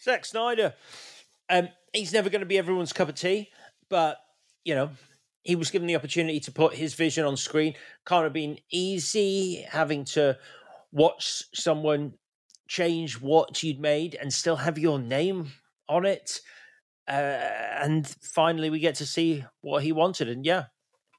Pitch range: 135-170 Hz